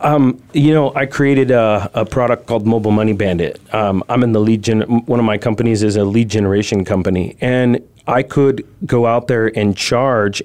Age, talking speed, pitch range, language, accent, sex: 30-49, 200 wpm, 105-135 Hz, English, American, male